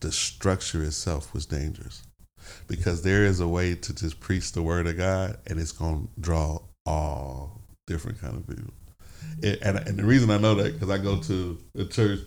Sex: male